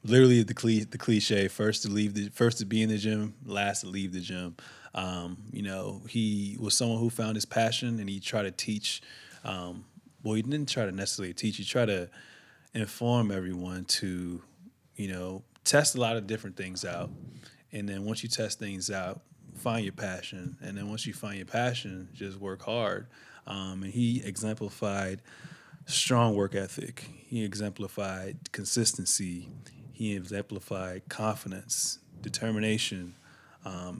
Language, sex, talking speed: English, male, 165 wpm